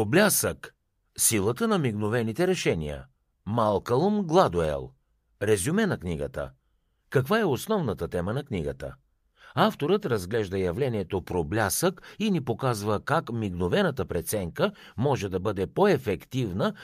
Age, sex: 60-79, male